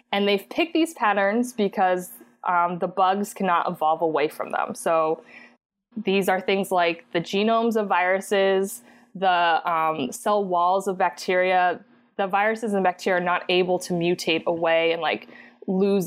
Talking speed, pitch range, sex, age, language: 155 wpm, 180-220 Hz, female, 20-39, English